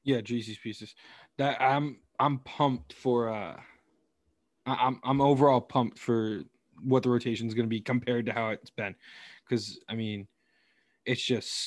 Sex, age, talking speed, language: male, 20-39, 160 wpm, English